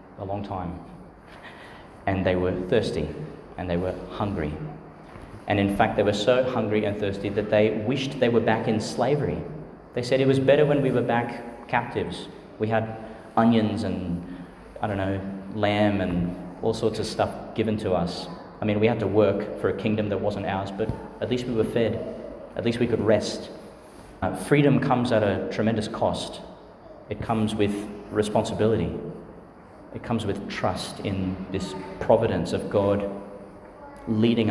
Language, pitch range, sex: English, 100-115 Hz, male